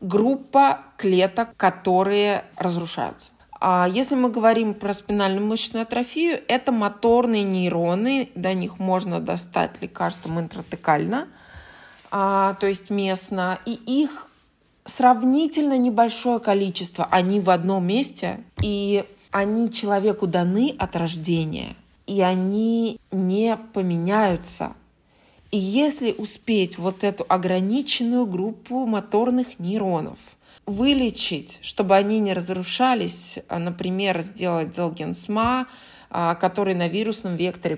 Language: Russian